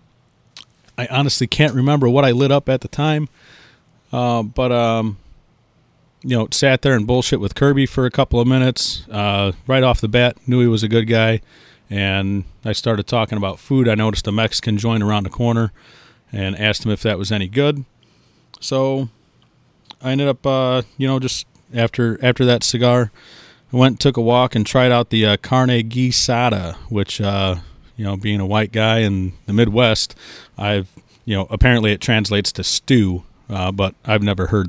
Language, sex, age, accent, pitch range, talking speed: English, male, 30-49, American, 100-125 Hz, 190 wpm